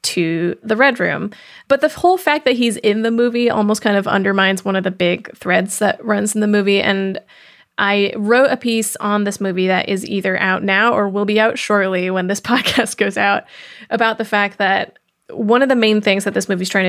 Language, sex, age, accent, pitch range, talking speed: English, female, 20-39, American, 195-225 Hz, 225 wpm